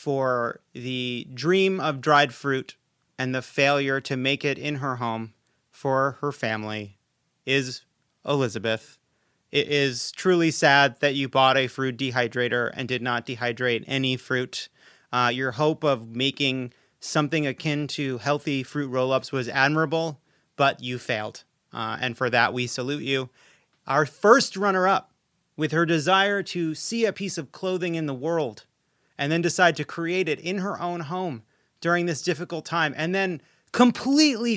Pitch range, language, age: 135-190 Hz, English, 30-49